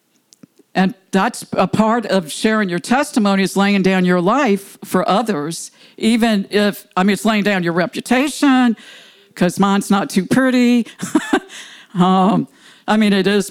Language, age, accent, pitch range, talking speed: English, 50-69, American, 175-220 Hz, 150 wpm